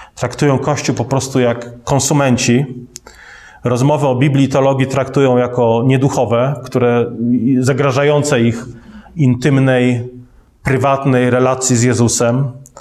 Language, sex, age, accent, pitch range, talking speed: Polish, male, 30-49, native, 115-135 Hz, 95 wpm